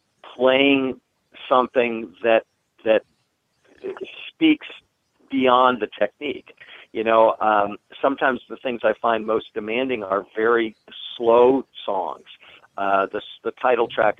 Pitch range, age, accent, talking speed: 100-125 Hz, 50-69, American, 115 wpm